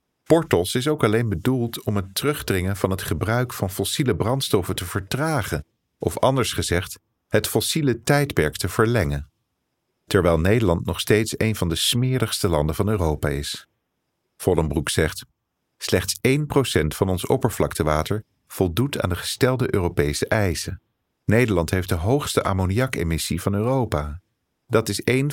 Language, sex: Dutch, male